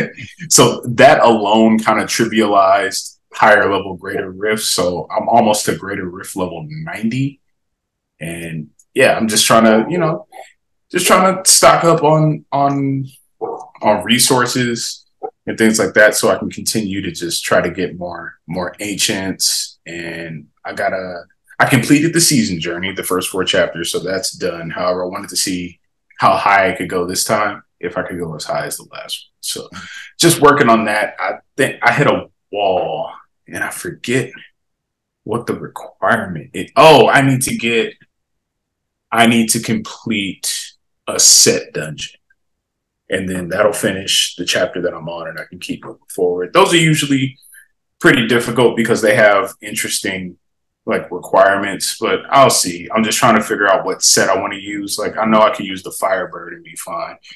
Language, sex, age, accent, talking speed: English, male, 20-39, American, 180 wpm